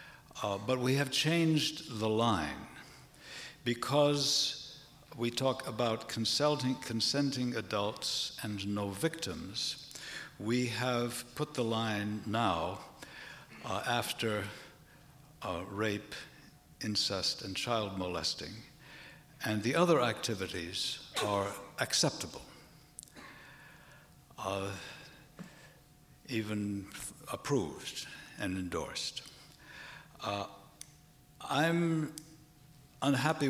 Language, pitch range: English, 110-145 Hz